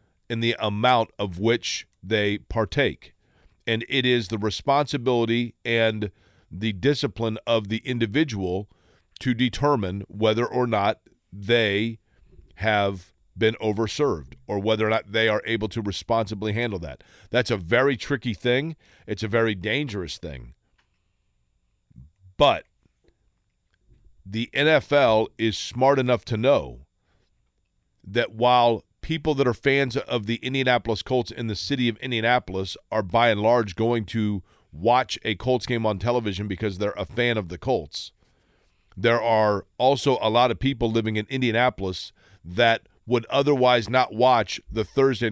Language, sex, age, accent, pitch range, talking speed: English, male, 40-59, American, 100-125 Hz, 140 wpm